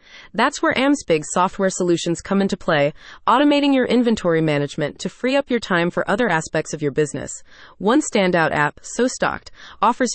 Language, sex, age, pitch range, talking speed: English, female, 30-49, 170-235 Hz, 170 wpm